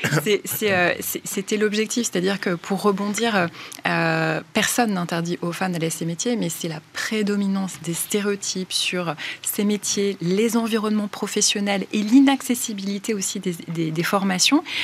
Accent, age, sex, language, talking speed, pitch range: French, 20-39, female, French, 145 wpm, 180-220 Hz